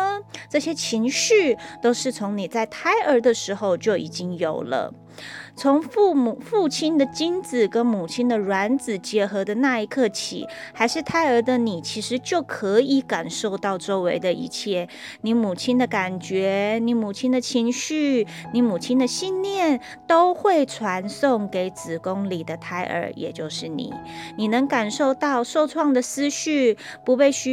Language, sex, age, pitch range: Chinese, female, 20-39, 200-280 Hz